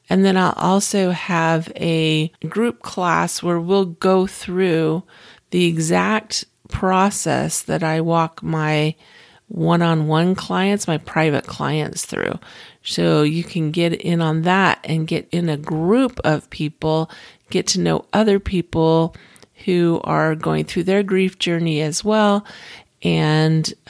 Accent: American